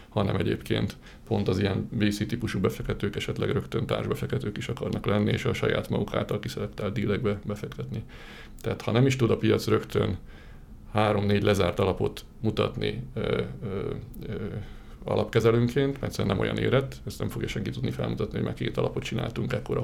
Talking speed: 165 wpm